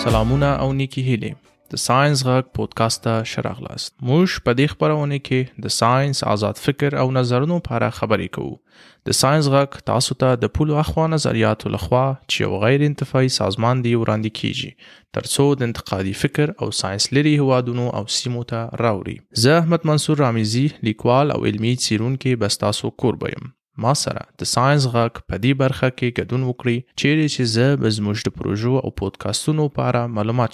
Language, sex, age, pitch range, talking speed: Persian, male, 20-39, 110-140 Hz, 175 wpm